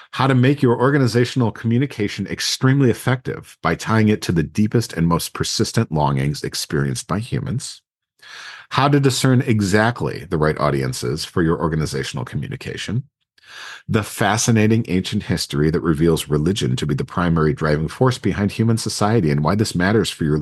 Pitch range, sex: 85-130 Hz, male